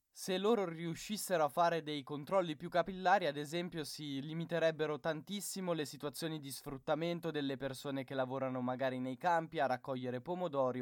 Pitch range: 130-170 Hz